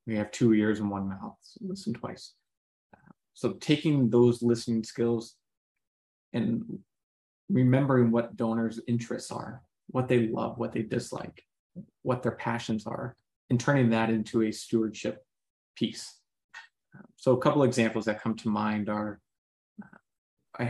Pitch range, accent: 115-125 Hz, American